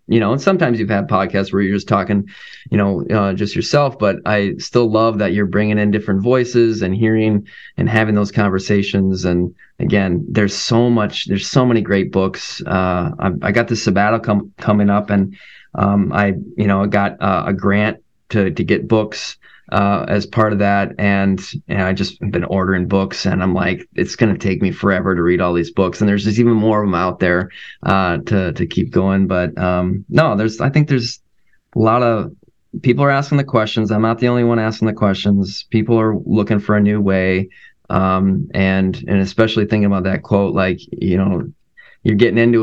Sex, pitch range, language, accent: male, 95-110 Hz, English, American